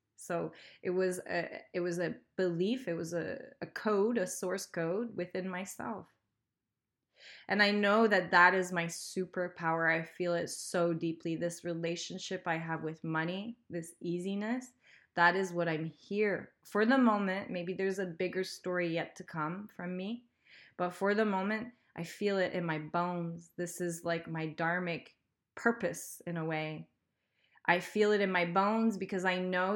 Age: 20-39